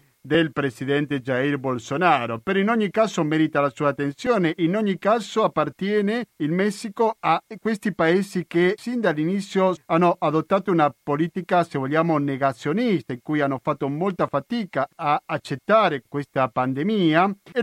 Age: 50-69